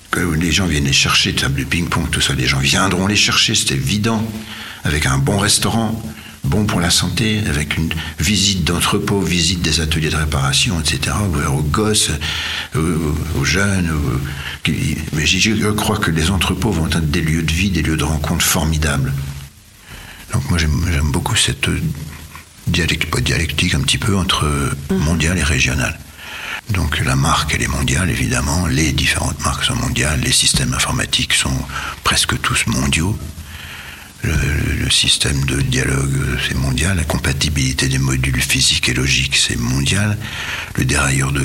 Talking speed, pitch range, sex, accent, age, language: 165 wpm, 70-95 Hz, male, French, 60-79, French